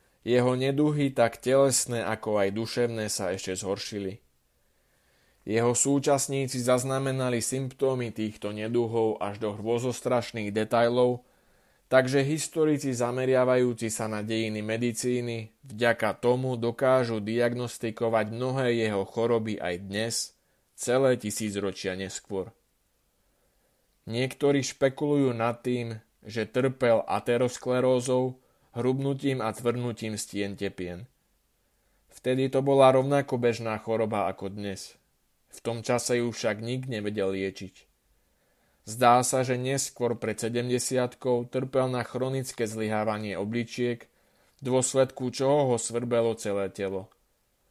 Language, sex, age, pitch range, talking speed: Slovak, male, 20-39, 110-125 Hz, 105 wpm